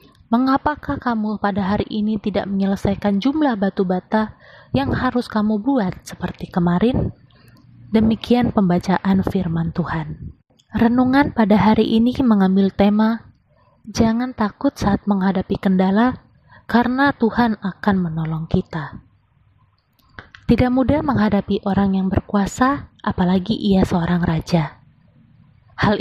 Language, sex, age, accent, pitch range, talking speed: Indonesian, female, 20-39, native, 180-225 Hz, 110 wpm